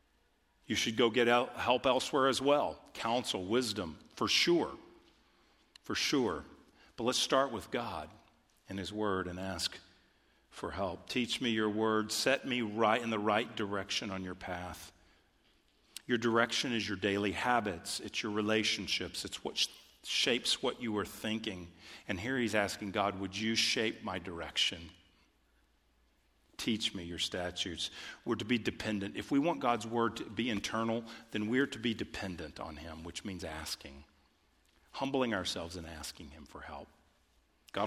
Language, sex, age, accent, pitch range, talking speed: English, male, 50-69, American, 90-115 Hz, 160 wpm